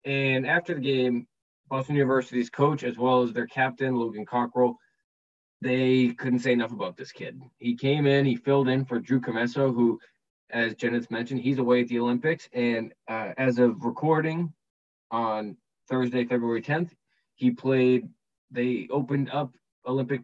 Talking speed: 160 wpm